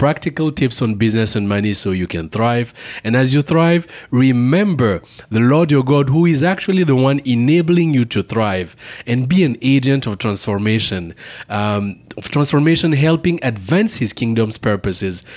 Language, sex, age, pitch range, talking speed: English, male, 30-49, 110-145 Hz, 165 wpm